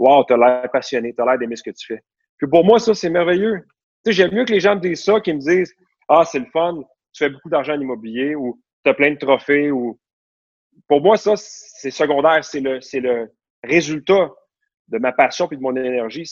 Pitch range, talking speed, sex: 135-210 Hz, 235 wpm, male